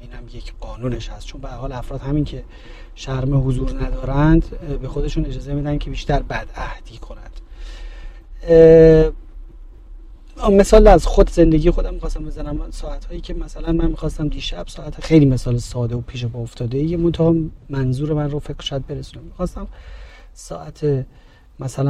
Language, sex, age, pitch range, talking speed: Persian, male, 40-59, 130-165 Hz, 150 wpm